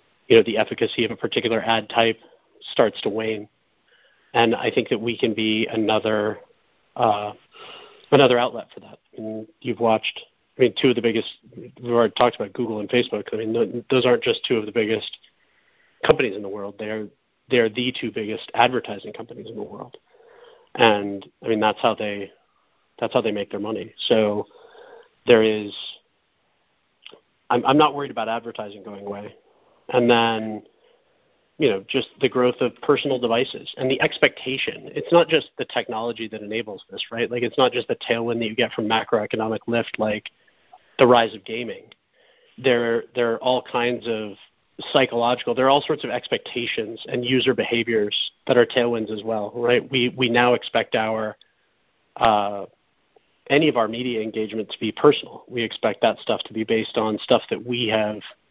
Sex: male